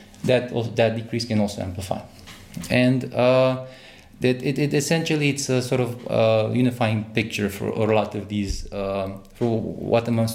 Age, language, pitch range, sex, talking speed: 20-39, Bulgarian, 100-115 Hz, male, 175 wpm